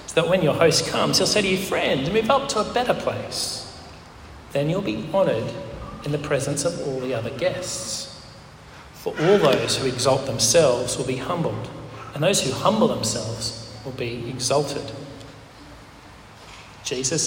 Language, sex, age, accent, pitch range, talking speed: English, male, 30-49, Australian, 125-155 Hz, 160 wpm